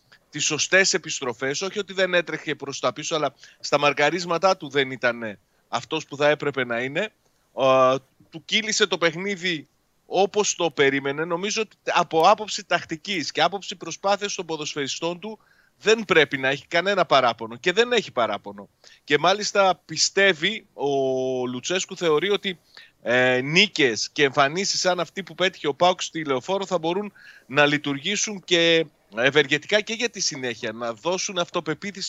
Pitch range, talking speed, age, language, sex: 145-195 Hz, 155 wpm, 30-49, Greek, male